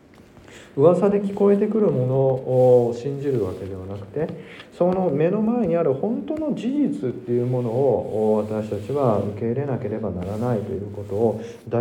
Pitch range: 110-140 Hz